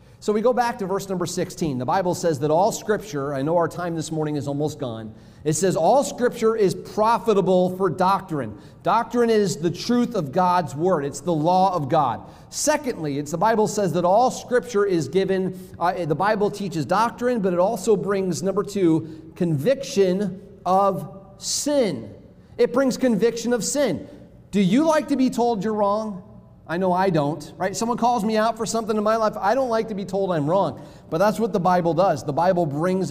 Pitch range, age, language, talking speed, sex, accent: 160-210 Hz, 40-59, English, 200 wpm, male, American